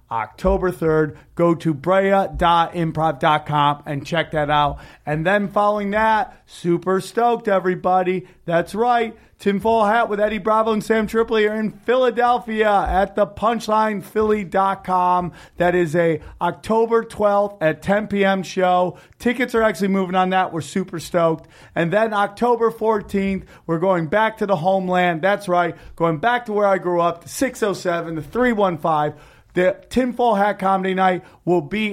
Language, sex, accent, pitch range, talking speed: English, male, American, 165-205 Hz, 160 wpm